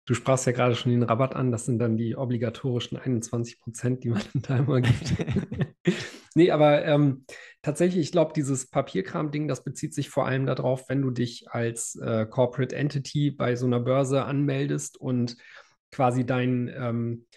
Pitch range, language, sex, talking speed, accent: 120-145 Hz, German, male, 175 wpm, German